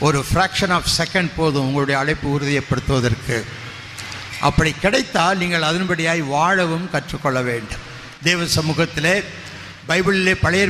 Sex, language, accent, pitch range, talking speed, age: male, Tamil, native, 145-185 Hz, 100 wpm, 60-79